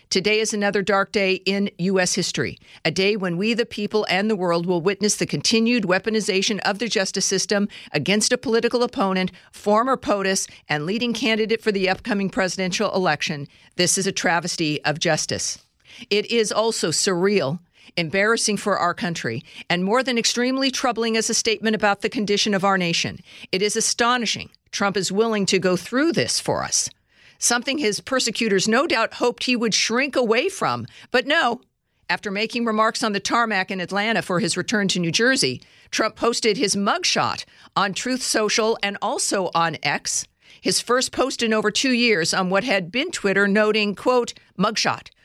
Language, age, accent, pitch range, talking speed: English, 50-69, American, 180-225 Hz, 175 wpm